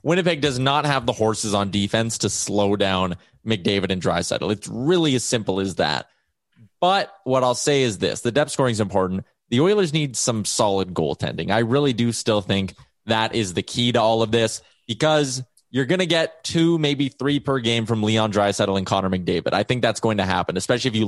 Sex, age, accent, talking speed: male, 20-39, American, 215 wpm